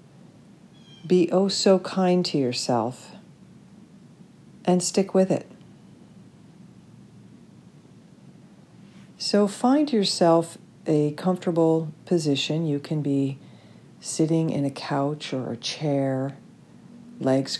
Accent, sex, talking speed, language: American, female, 85 wpm, English